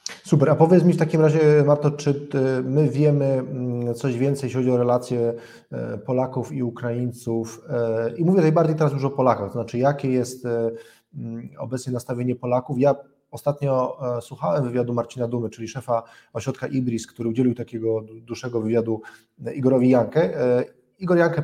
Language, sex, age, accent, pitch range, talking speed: Polish, male, 20-39, native, 120-145 Hz, 150 wpm